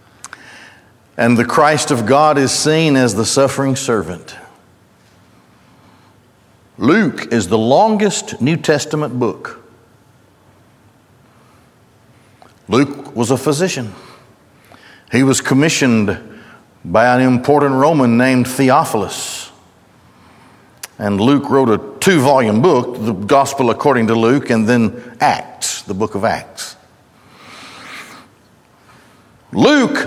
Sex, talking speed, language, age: male, 100 wpm, English, 60-79